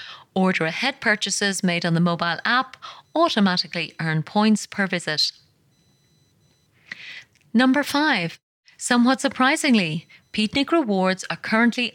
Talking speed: 105 wpm